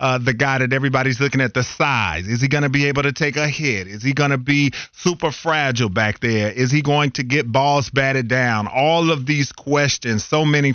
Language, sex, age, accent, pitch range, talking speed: English, male, 40-59, American, 120-140 Hz, 235 wpm